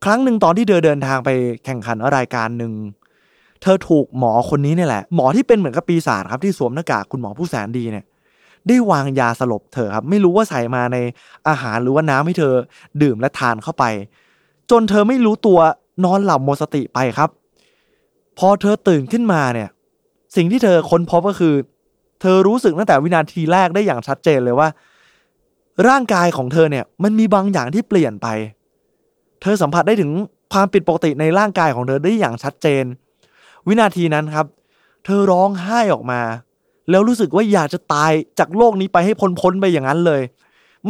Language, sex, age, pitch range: Thai, male, 20-39, 140-210 Hz